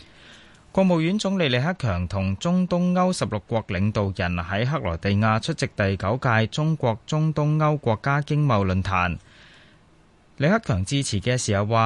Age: 20-39